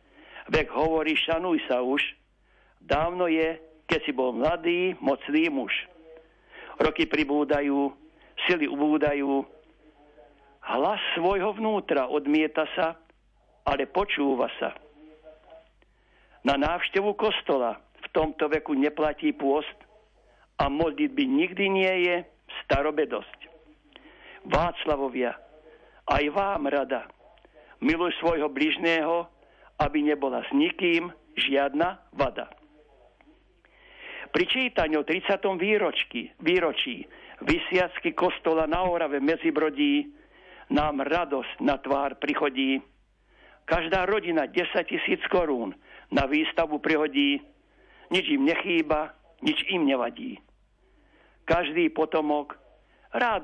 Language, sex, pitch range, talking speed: Slovak, male, 150-205 Hz, 95 wpm